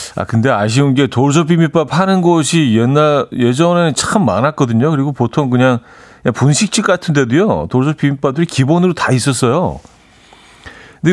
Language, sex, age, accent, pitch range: Korean, male, 40-59, native, 100-145 Hz